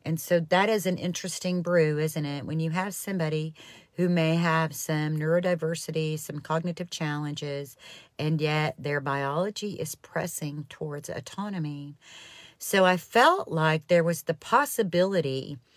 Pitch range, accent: 150-180 Hz, American